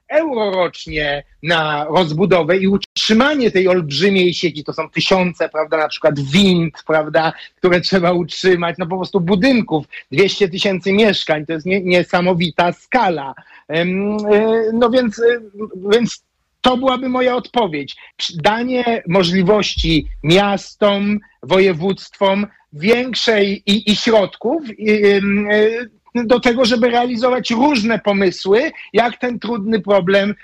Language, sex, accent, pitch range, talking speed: Polish, male, native, 180-230 Hz, 115 wpm